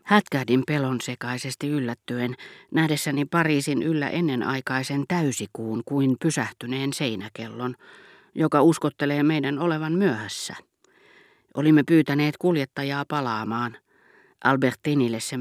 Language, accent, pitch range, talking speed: Finnish, native, 125-155 Hz, 90 wpm